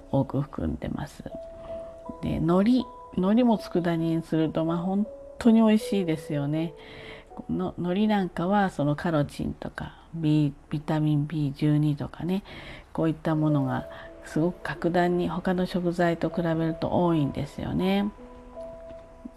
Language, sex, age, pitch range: Japanese, female, 40-59, 145-185 Hz